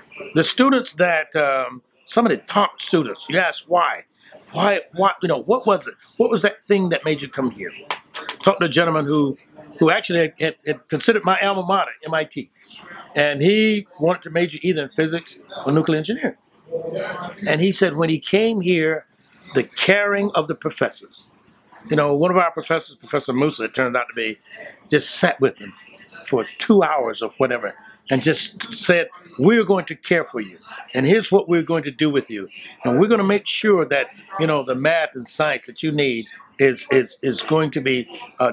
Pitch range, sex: 145-195 Hz, male